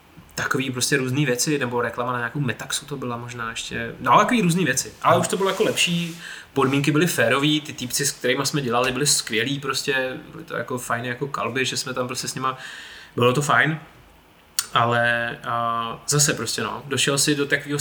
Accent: native